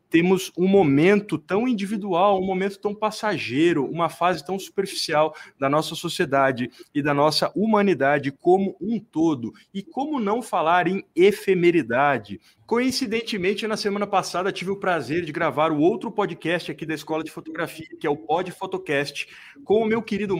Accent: Brazilian